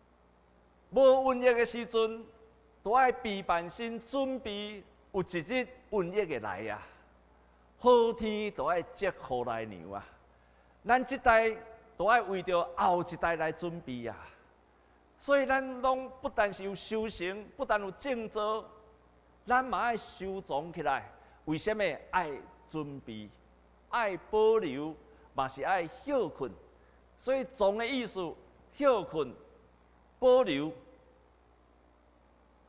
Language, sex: Chinese, male